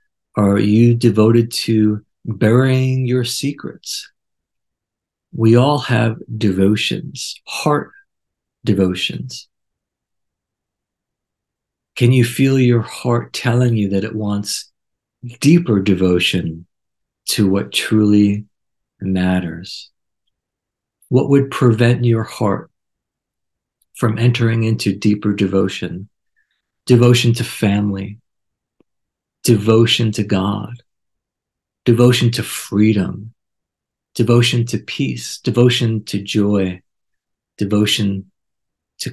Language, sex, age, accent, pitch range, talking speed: English, male, 50-69, American, 100-120 Hz, 85 wpm